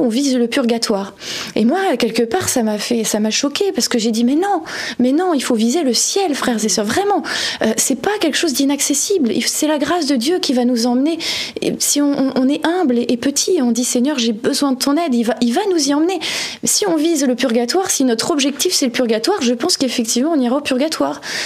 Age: 20-39